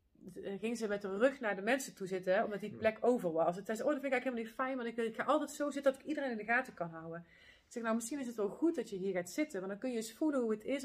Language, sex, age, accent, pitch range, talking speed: Dutch, female, 30-49, Dutch, 190-230 Hz, 345 wpm